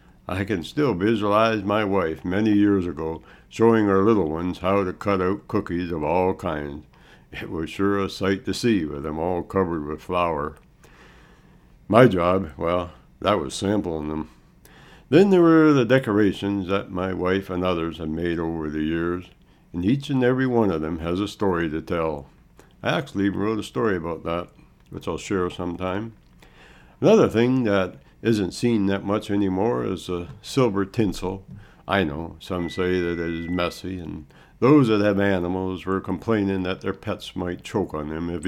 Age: 60-79